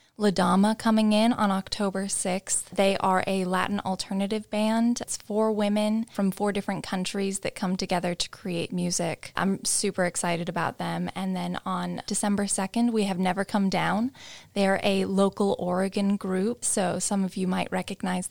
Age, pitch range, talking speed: 10-29, 185-210 Hz, 165 wpm